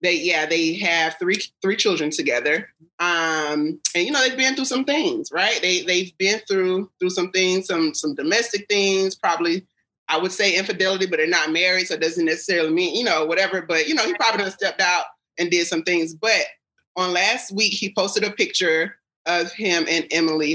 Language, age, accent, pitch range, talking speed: English, 30-49, American, 160-205 Hz, 205 wpm